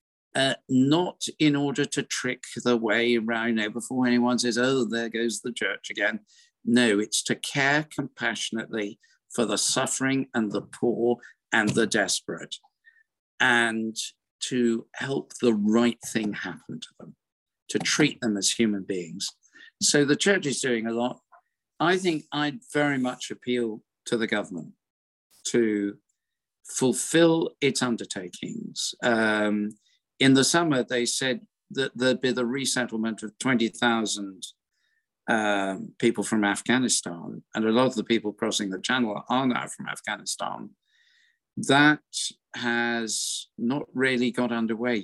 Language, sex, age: English, male, 50-69